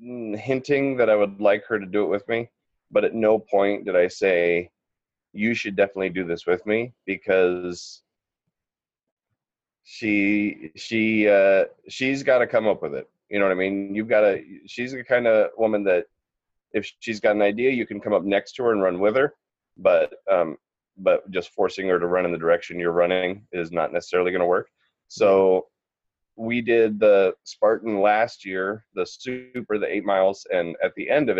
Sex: male